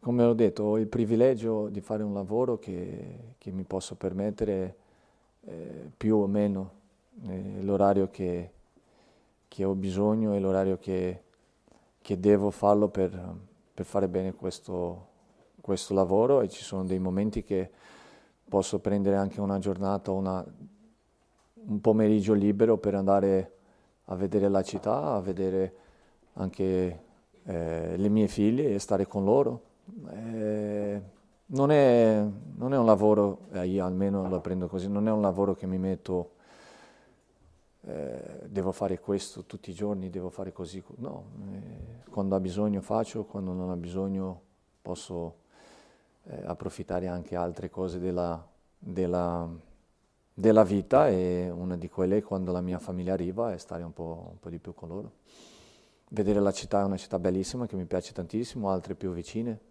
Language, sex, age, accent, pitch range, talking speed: Italian, male, 40-59, native, 90-105 Hz, 155 wpm